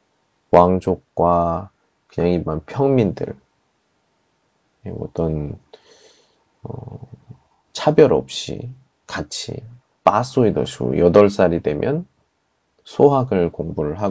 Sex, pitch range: male, 85-125 Hz